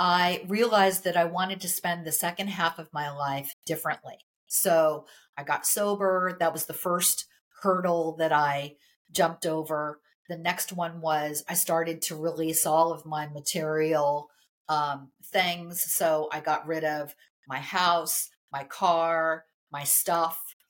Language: English